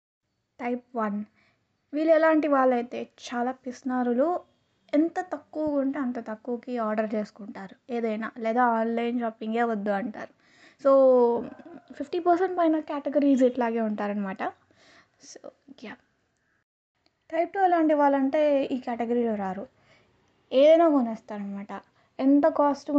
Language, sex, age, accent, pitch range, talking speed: Telugu, female, 20-39, native, 230-295 Hz, 105 wpm